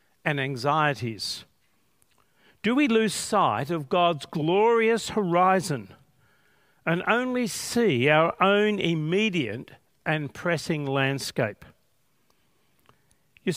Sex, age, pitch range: male, 50-69, 140-190 Hz